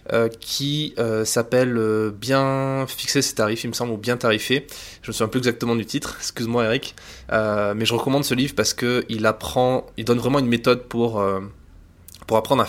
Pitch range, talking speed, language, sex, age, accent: 110-130 Hz, 205 wpm, French, male, 20-39, French